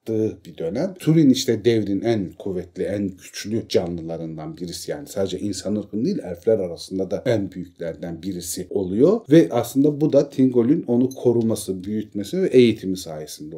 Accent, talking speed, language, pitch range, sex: native, 145 wpm, Turkish, 95-145 Hz, male